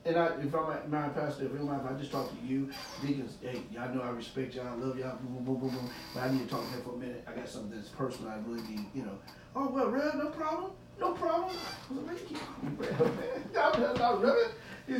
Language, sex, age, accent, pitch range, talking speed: English, male, 30-49, American, 115-165 Hz, 235 wpm